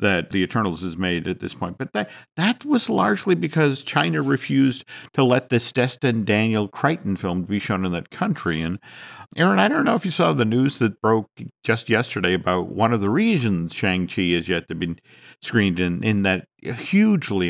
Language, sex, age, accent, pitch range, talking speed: English, male, 50-69, American, 95-135 Hz, 195 wpm